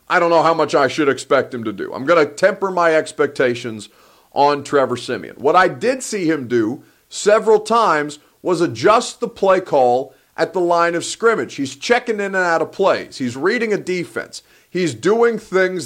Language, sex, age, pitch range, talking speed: English, male, 40-59, 150-215 Hz, 195 wpm